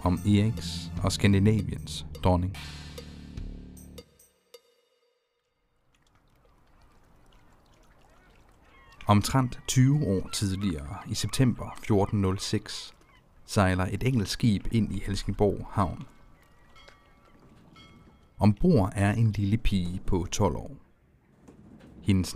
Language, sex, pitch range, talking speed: Danish, male, 90-110 Hz, 80 wpm